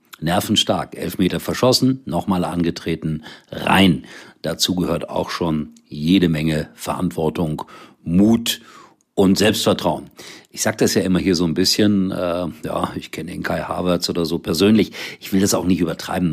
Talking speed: 150 wpm